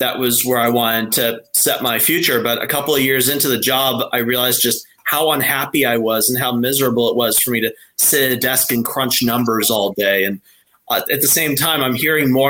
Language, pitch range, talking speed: English, 125-160 Hz, 240 wpm